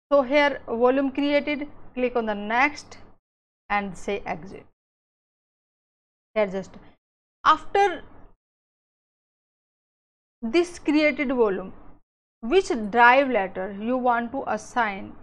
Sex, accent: female, Indian